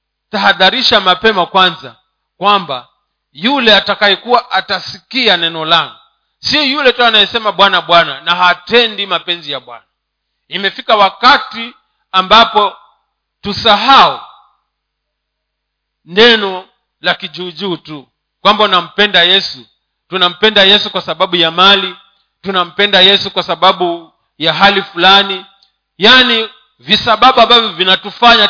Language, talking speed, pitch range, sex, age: Swahili, 100 wpm, 155-210 Hz, male, 40-59